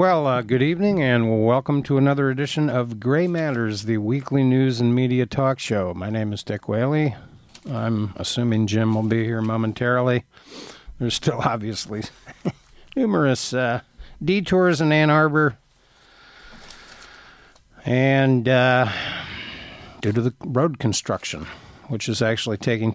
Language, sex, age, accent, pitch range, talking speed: English, male, 50-69, American, 115-140 Hz, 135 wpm